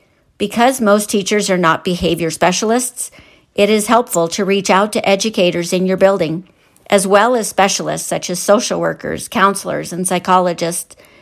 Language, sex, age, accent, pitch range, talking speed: English, female, 50-69, American, 175-210 Hz, 155 wpm